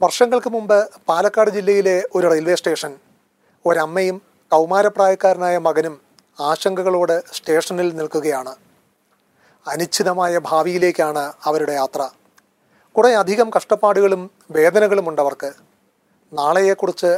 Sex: male